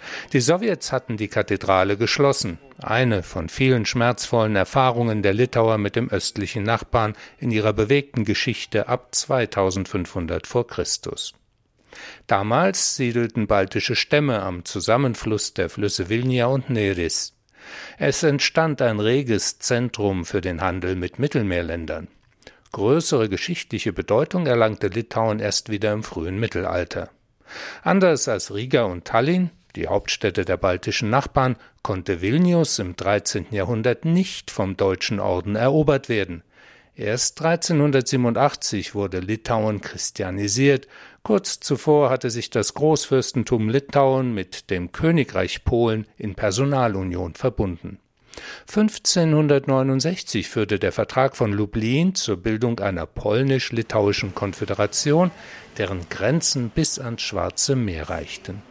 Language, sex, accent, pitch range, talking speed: German, male, German, 100-135 Hz, 115 wpm